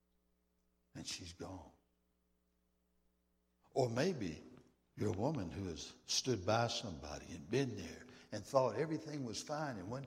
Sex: male